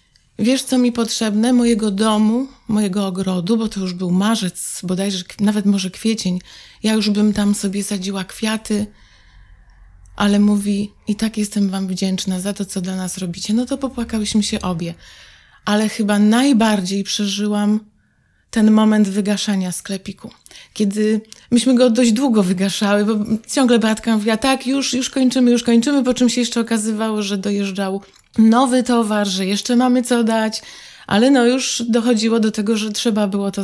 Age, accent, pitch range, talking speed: 20-39, native, 200-230 Hz, 160 wpm